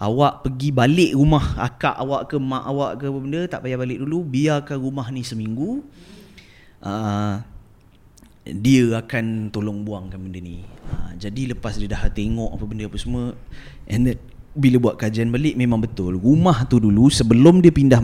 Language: Malay